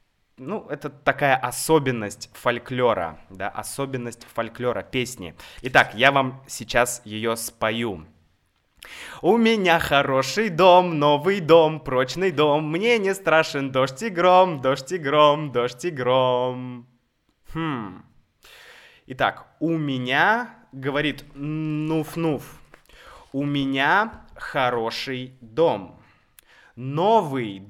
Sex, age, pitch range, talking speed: male, 20-39, 125-165 Hz, 100 wpm